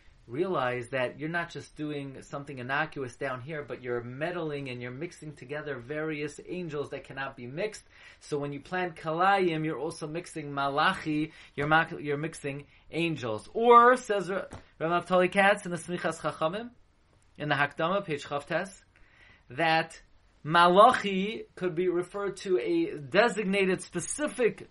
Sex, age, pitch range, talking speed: male, 20-39, 140-215 Hz, 145 wpm